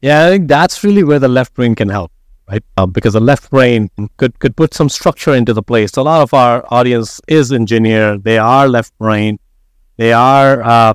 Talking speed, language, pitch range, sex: 220 wpm, English, 115-150 Hz, male